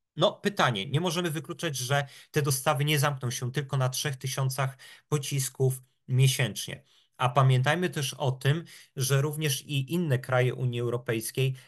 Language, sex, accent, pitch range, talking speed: Polish, male, native, 120-135 Hz, 145 wpm